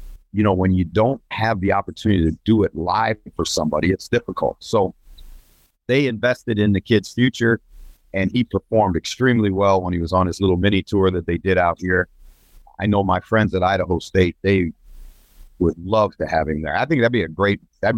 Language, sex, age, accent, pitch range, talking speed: English, male, 50-69, American, 85-105 Hz, 205 wpm